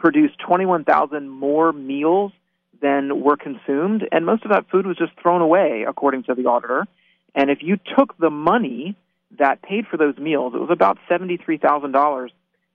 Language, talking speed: English, 165 wpm